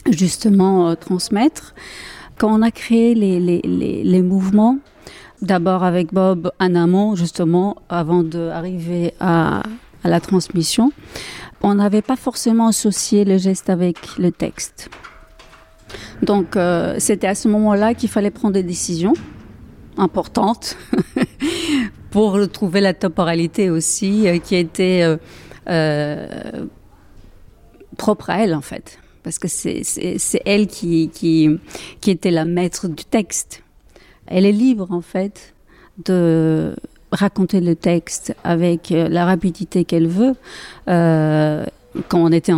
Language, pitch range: French, 170-205 Hz